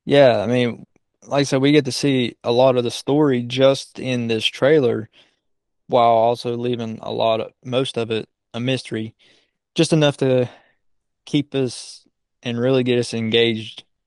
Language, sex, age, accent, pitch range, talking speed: English, male, 20-39, American, 115-130 Hz, 170 wpm